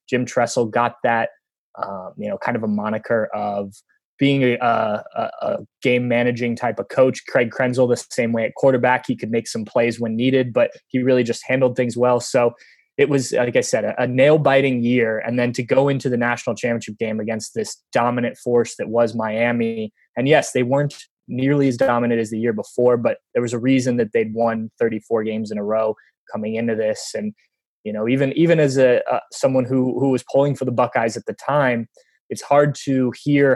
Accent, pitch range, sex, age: American, 115-130 Hz, male, 20-39